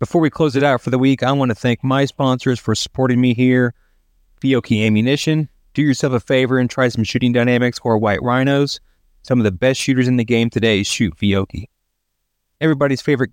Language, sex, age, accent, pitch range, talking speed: English, male, 30-49, American, 105-130 Hz, 205 wpm